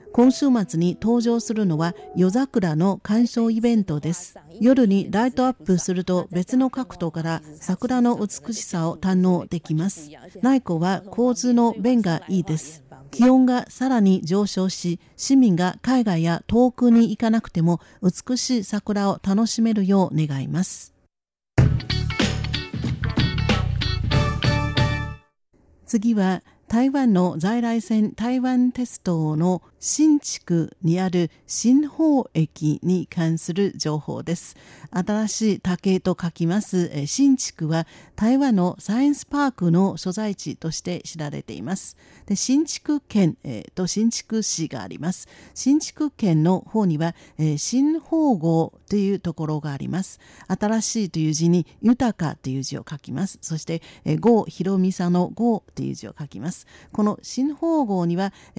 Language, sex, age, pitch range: Japanese, female, 50-69, 165-235 Hz